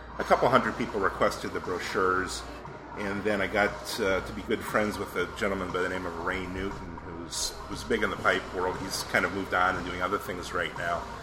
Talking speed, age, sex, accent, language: 230 wpm, 40-59, male, American, English